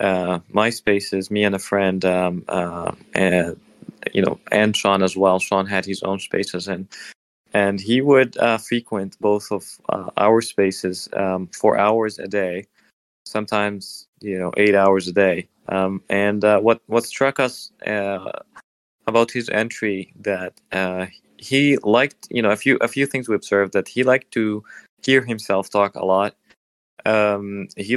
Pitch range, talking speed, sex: 95-110 Hz, 170 wpm, male